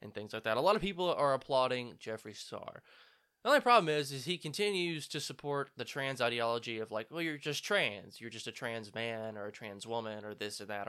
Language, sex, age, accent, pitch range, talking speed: English, male, 10-29, American, 110-160 Hz, 235 wpm